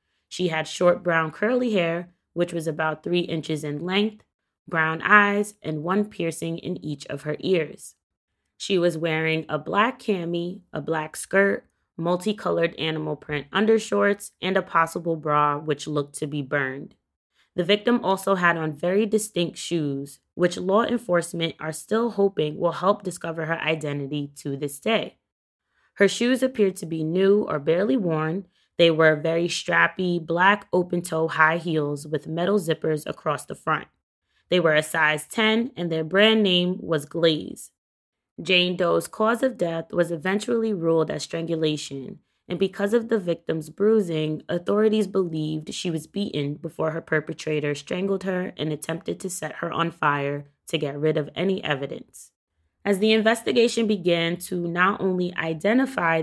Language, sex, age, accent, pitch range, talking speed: English, female, 20-39, American, 155-195 Hz, 160 wpm